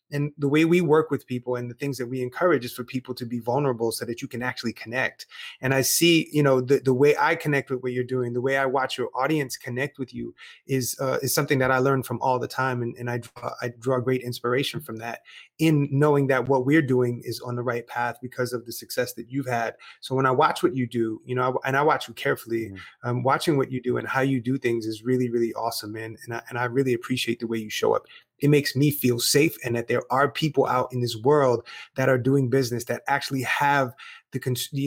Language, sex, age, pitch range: English, male, 30-49, 120-140 Hz